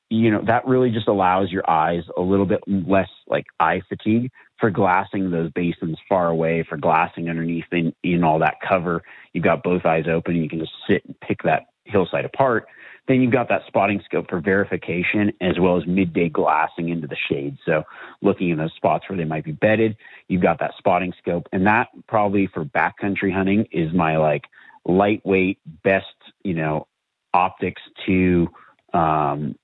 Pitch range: 80-95 Hz